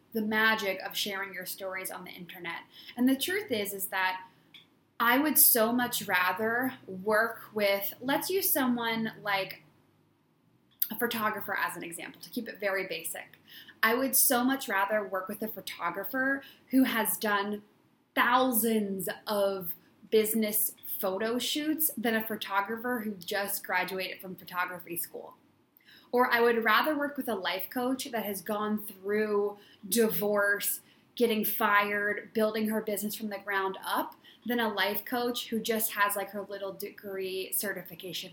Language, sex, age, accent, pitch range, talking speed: English, female, 20-39, American, 195-240 Hz, 150 wpm